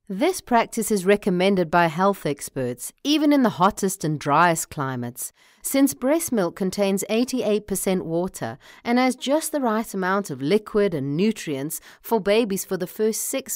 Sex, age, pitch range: female, 40-59, 150-225 Hz